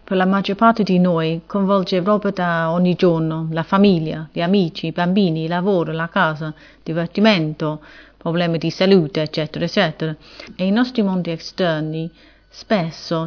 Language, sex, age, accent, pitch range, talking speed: Italian, female, 30-49, native, 165-200 Hz, 150 wpm